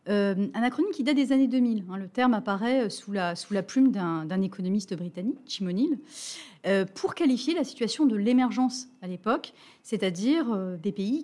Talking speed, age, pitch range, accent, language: 185 wpm, 40-59, 195-260 Hz, French, French